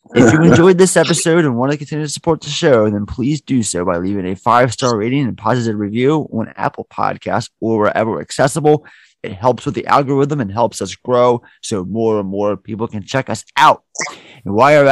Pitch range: 110-145 Hz